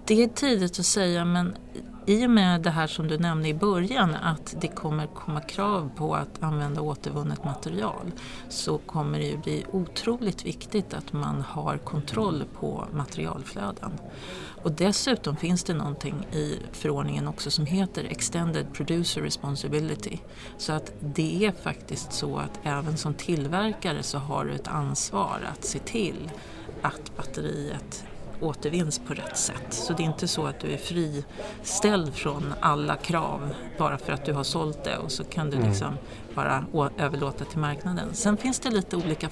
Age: 40-59